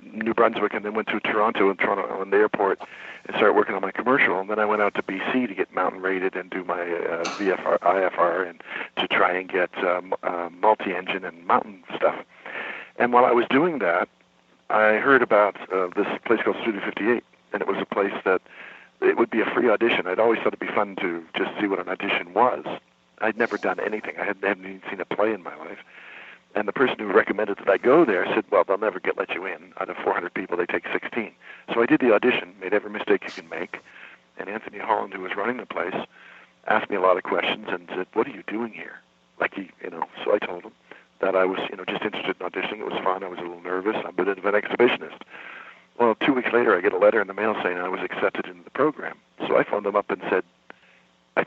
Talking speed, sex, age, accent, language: 250 wpm, male, 60-79, American, English